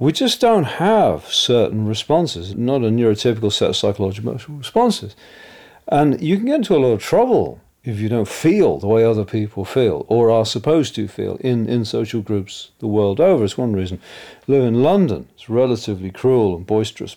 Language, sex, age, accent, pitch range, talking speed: English, male, 50-69, British, 100-125 Hz, 195 wpm